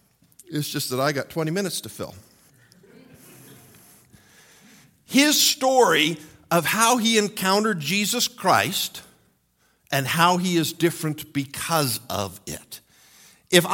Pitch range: 150-205 Hz